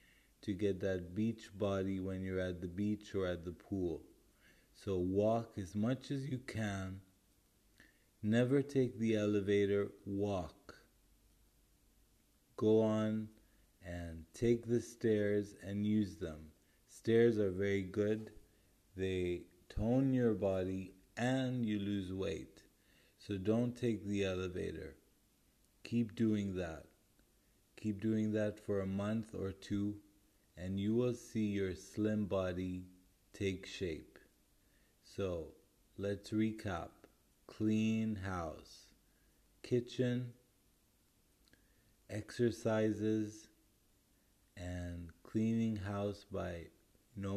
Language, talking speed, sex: English, 105 wpm, male